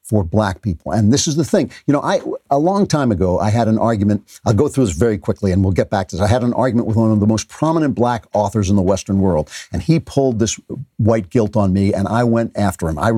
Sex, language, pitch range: male, English, 100-135 Hz